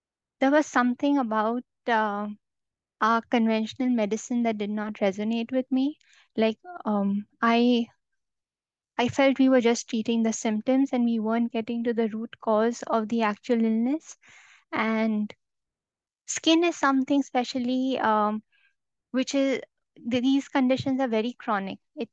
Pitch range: 220-255 Hz